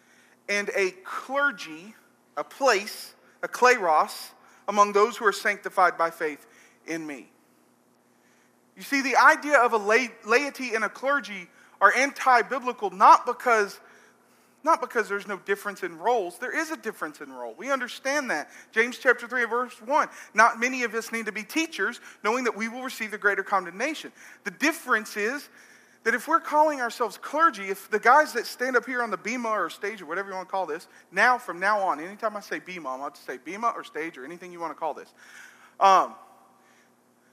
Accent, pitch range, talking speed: American, 195-255 Hz, 190 wpm